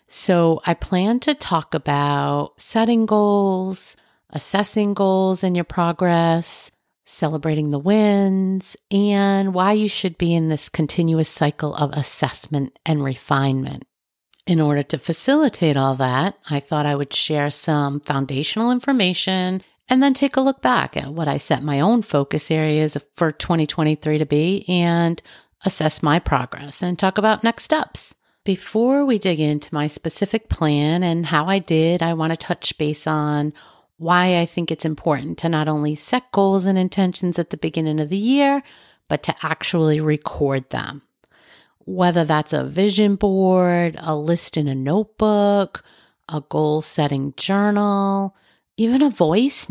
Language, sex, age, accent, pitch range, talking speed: English, female, 50-69, American, 155-200 Hz, 150 wpm